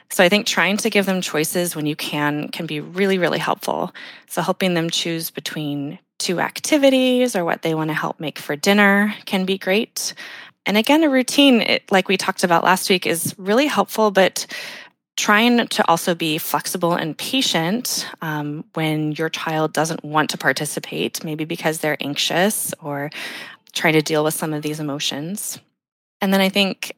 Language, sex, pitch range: English, female, 155-200 Hz